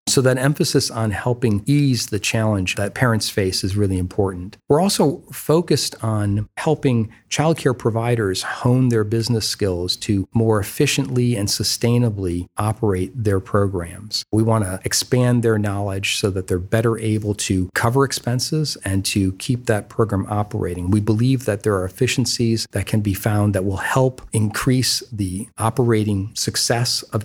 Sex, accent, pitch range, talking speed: male, American, 100-125 Hz, 155 wpm